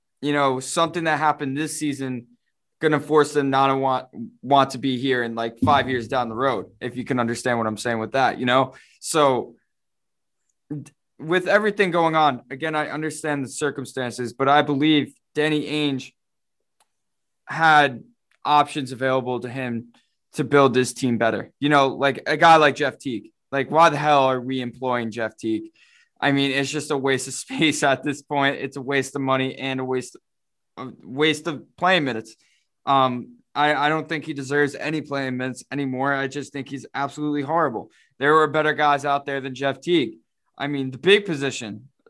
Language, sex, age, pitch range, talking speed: English, male, 20-39, 130-150 Hz, 190 wpm